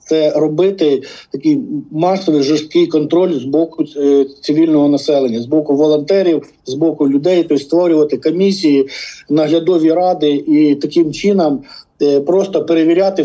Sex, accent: male, native